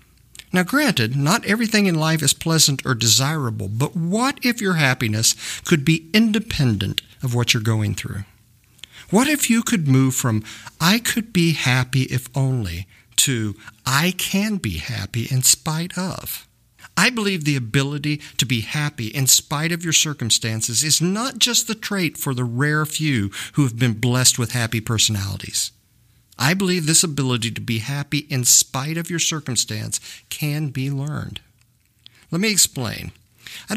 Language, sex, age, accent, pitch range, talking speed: English, male, 50-69, American, 115-165 Hz, 160 wpm